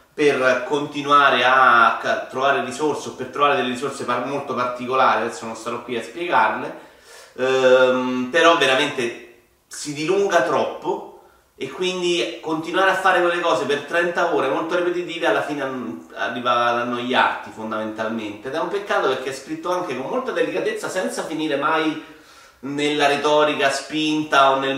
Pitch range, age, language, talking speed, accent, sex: 130-175 Hz, 30-49, Italian, 150 wpm, native, male